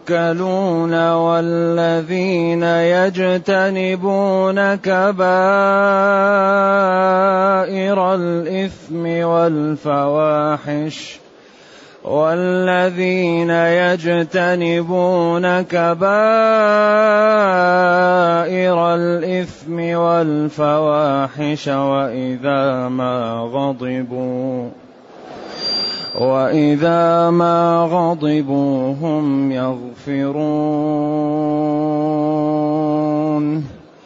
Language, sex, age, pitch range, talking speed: Arabic, male, 30-49, 150-185 Hz, 35 wpm